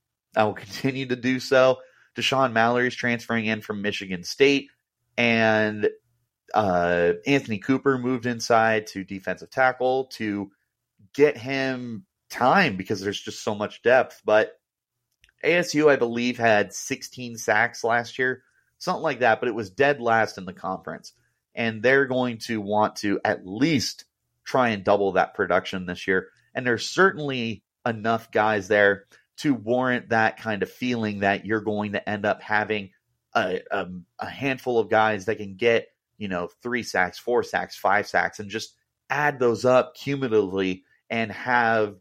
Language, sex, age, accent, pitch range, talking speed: English, male, 30-49, American, 105-130 Hz, 160 wpm